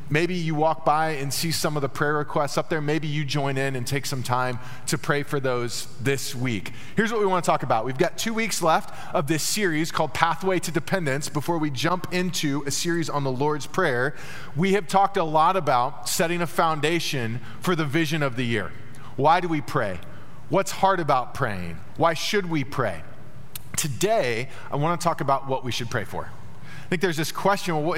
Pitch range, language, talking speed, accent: 135-180 Hz, English, 215 wpm, American